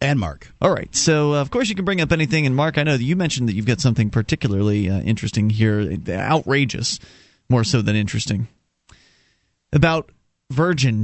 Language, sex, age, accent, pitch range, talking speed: English, male, 30-49, American, 110-150 Hz, 190 wpm